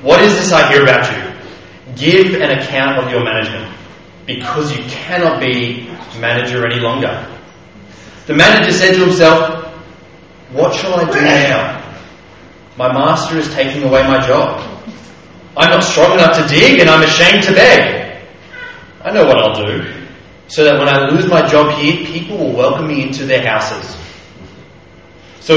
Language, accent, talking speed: English, Australian, 160 wpm